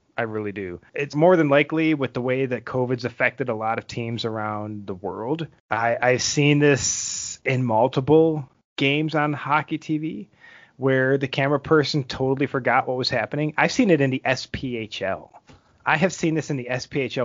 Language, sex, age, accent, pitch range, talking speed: English, male, 30-49, American, 120-150 Hz, 175 wpm